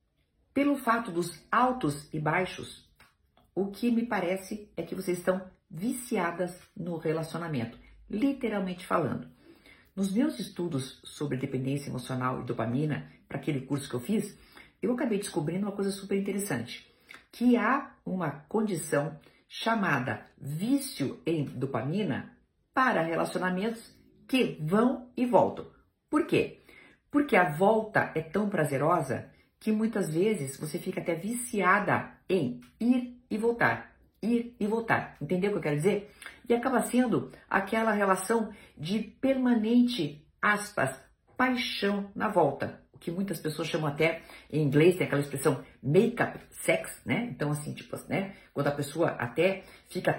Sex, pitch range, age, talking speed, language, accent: female, 150-220 Hz, 50-69, 140 wpm, Portuguese, Brazilian